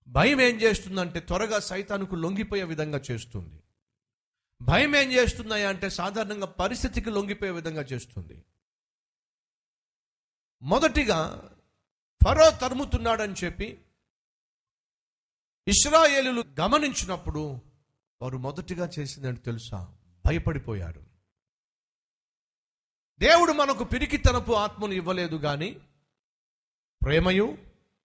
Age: 50-69